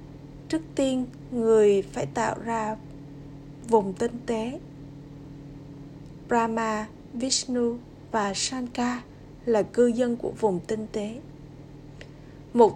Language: Vietnamese